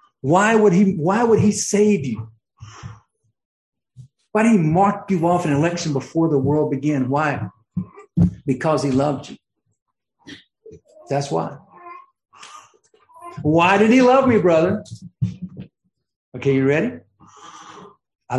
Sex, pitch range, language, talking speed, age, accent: male, 130-185 Hz, English, 120 wpm, 60-79, American